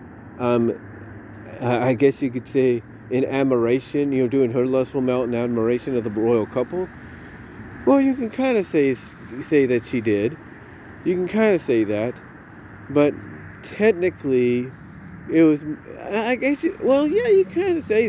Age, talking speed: 40-59, 165 wpm